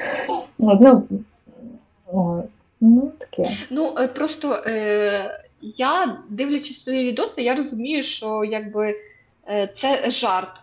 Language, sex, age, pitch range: Ukrainian, female, 20-39, 210-255 Hz